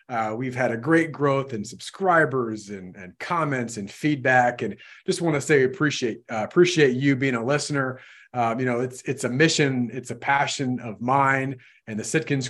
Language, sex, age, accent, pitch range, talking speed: English, male, 30-49, American, 120-150 Hz, 190 wpm